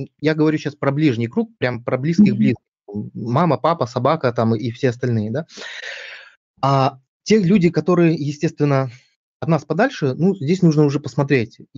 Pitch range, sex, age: 130-165 Hz, male, 20-39